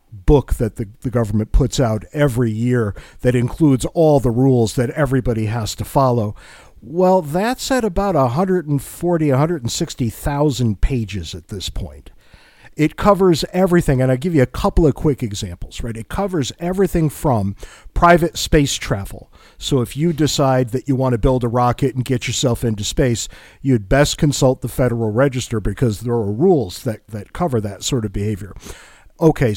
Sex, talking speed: male, 175 wpm